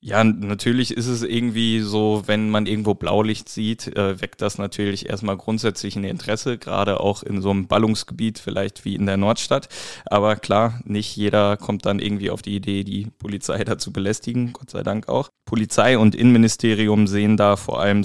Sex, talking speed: male, 180 wpm